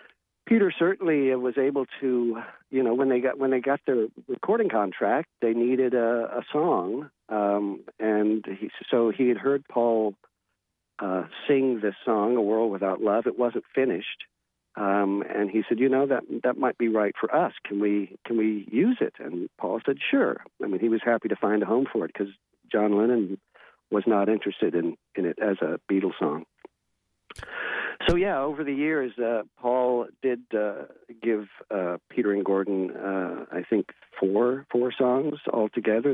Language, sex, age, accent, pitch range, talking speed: English, male, 50-69, American, 105-125 Hz, 180 wpm